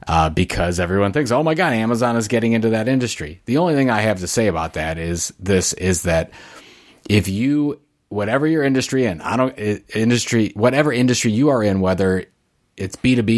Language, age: English, 30-49